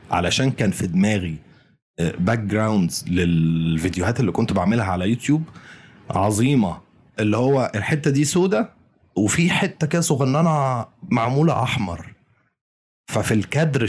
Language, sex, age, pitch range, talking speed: Arabic, male, 30-49, 95-135 Hz, 110 wpm